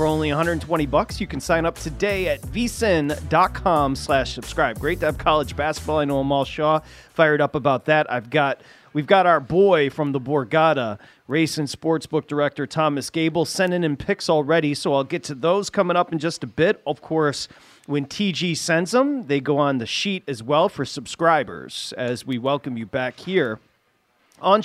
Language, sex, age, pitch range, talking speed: English, male, 30-49, 140-170 Hz, 185 wpm